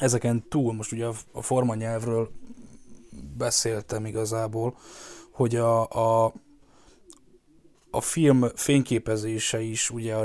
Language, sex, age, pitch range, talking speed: Hungarian, male, 10-29, 115-130 Hz, 105 wpm